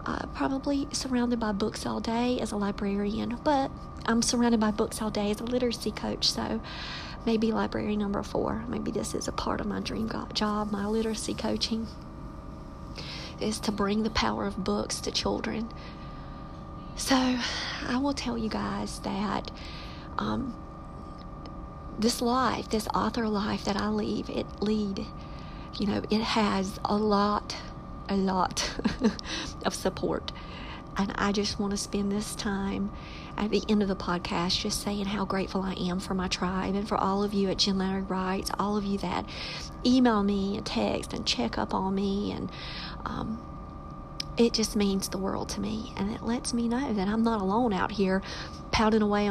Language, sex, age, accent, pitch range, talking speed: English, female, 50-69, American, 195-225 Hz, 175 wpm